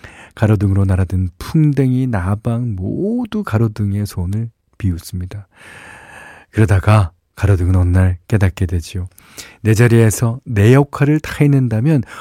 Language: Korean